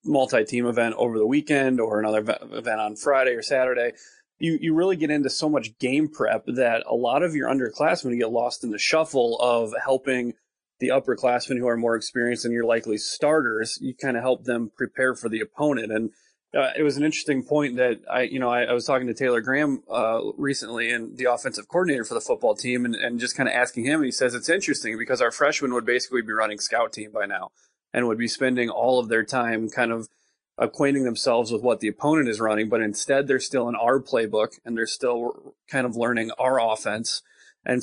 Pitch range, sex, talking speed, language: 115-140 Hz, male, 220 wpm, English